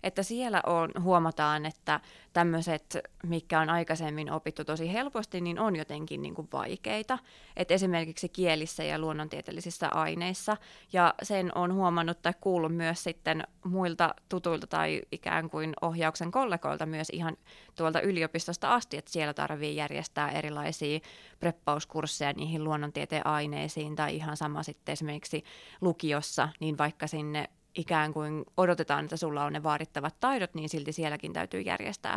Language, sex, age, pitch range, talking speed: Finnish, female, 20-39, 155-185 Hz, 140 wpm